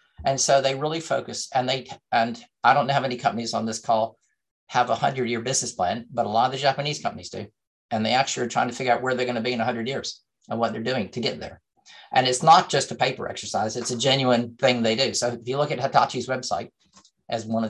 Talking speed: 260 wpm